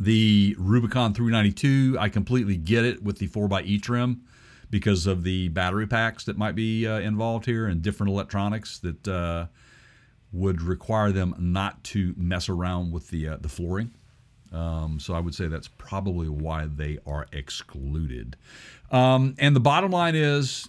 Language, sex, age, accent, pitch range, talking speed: English, male, 50-69, American, 100-130 Hz, 160 wpm